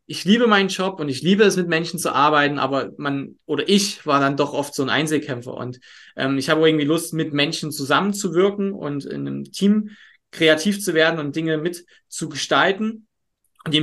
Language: German